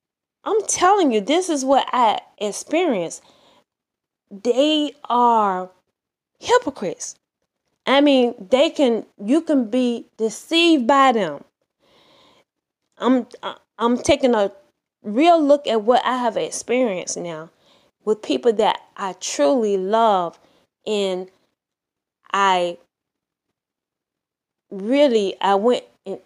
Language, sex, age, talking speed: English, female, 10-29, 105 wpm